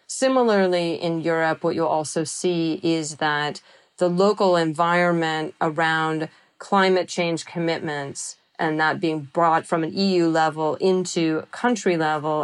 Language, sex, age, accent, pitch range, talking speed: English, female, 30-49, American, 160-185 Hz, 130 wpm